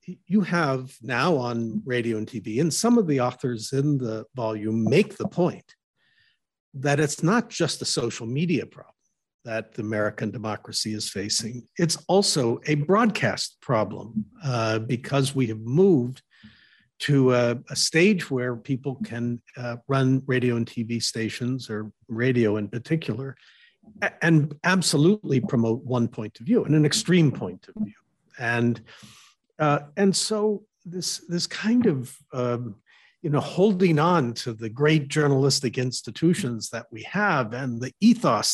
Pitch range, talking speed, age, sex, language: 115-170 Hz, 150 wpm, 50-69, male, English